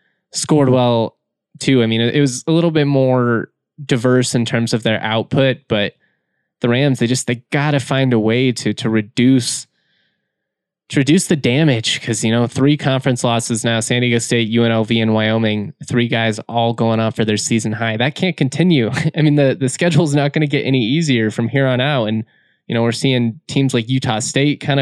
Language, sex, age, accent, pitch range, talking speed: English, male, 20-39, American, 115-140 Hz, 210 wpm